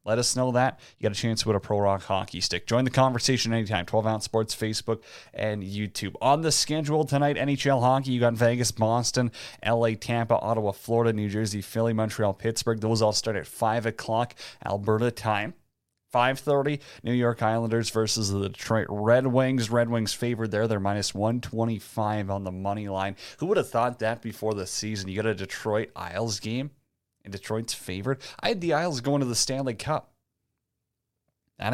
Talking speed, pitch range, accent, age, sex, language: 190 wpm, 105-125 Hz, American, 30-49, male, English